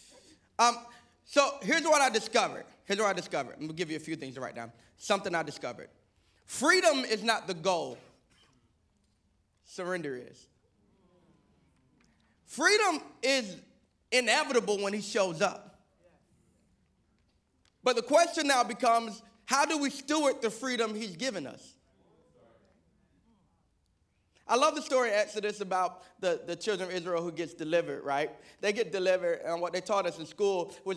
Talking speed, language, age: 155 wpm, English, 20-39